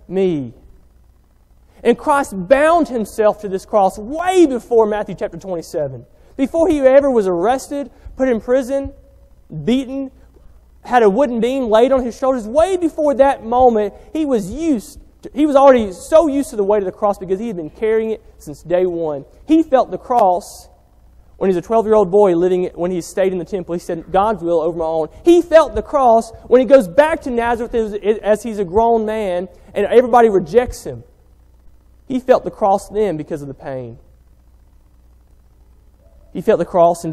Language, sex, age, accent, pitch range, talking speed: English, male, 30-49, American, 150-240 Hz, 185 wpm